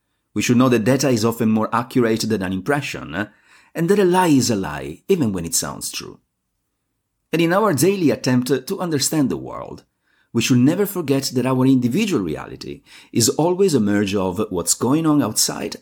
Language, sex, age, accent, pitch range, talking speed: English, male, 50-69, Italian, 110-150 Hz, 190 wpm